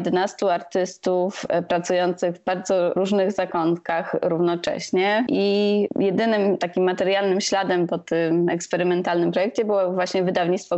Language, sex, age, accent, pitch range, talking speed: Polish, female, 20-39, native, 170-195 Hz, 110 wpm